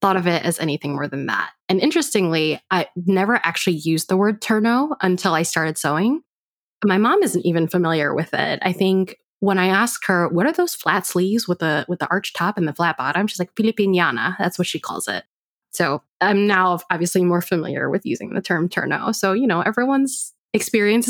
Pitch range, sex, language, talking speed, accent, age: 170-200 Hz, female, English, 210 wpm, American, 20-39